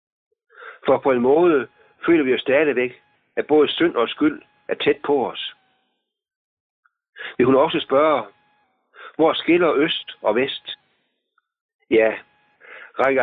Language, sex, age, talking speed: Danish, male, 60-79, 125 wpm